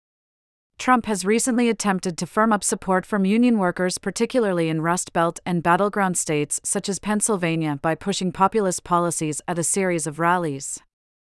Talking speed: 160 wpm